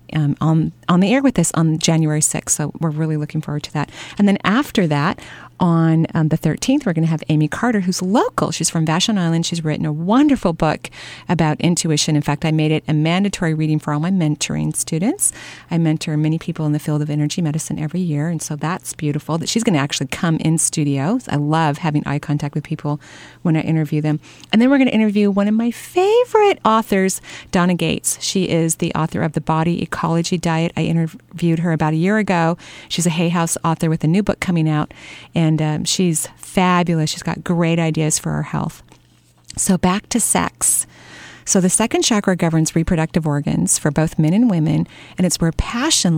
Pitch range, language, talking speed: 155-185 Hz, English, 215 wpm